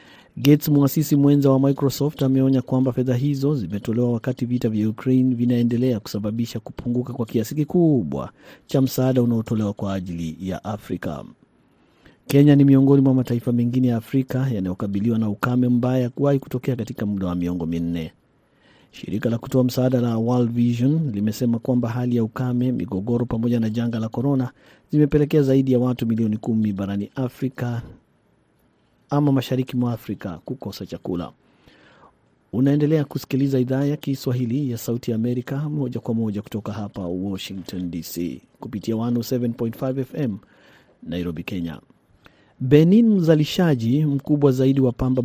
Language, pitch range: Swahili, 115-135 Hz